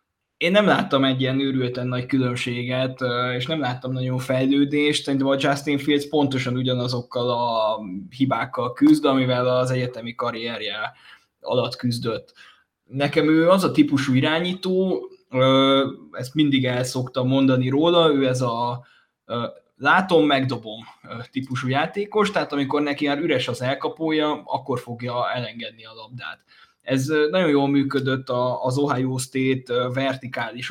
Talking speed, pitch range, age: 130 wpm, 125-145 Hz, 20-39